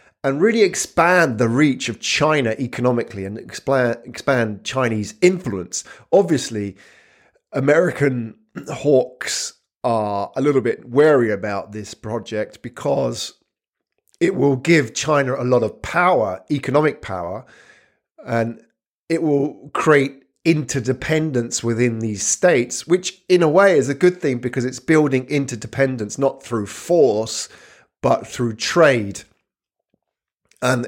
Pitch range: 110-140 Hz